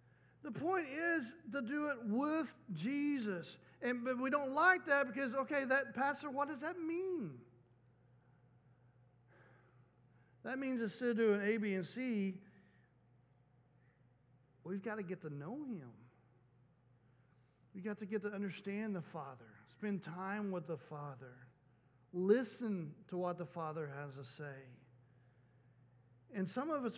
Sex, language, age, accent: male, English, 50-69, American